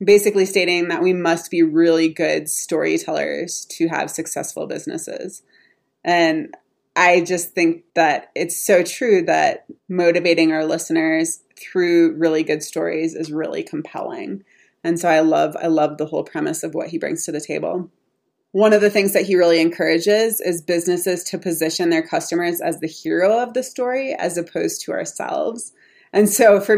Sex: female